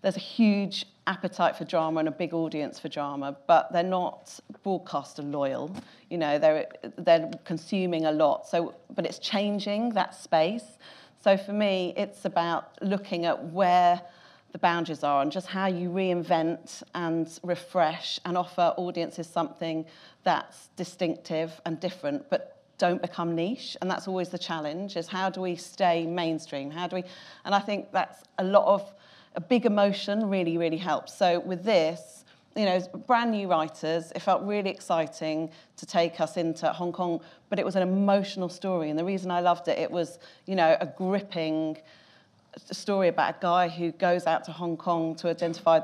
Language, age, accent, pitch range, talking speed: English, 40-59, British, 160-190 Hz, 175 wpm